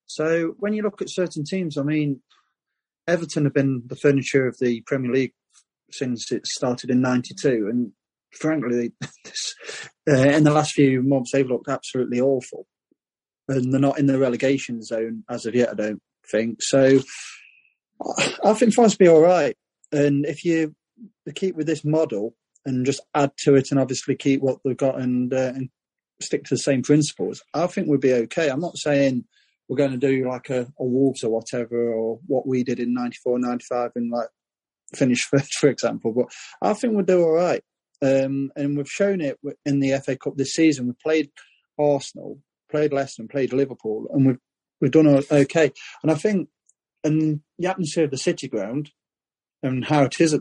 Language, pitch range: English, 125-150 Hz